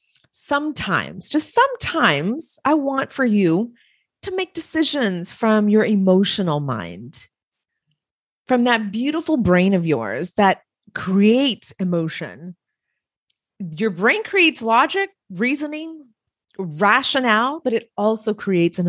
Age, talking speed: 40-59, 110 wpm